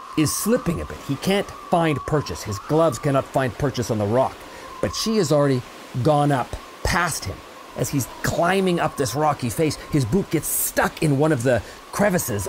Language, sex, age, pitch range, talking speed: English, male, 40-59, 130-175 Hz, 190 wpm